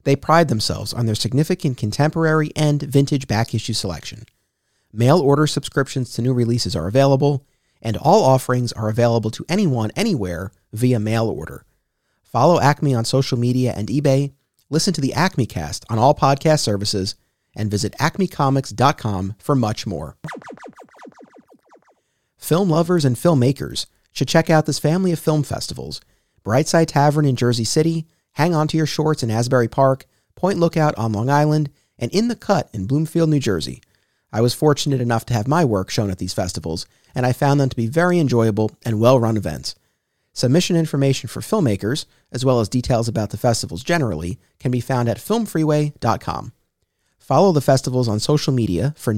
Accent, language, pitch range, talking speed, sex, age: American, English, 110-150 Hz, 165 wpm, male, 30-49